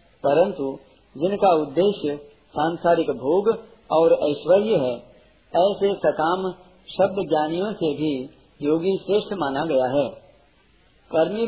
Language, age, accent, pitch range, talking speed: Hindi, 50-69, native, 150-195 Hz, 105 wpm